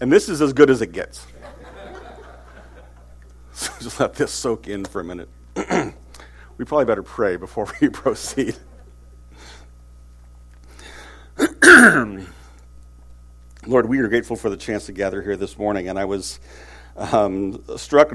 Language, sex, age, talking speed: English, male, 50-69, 135 wpm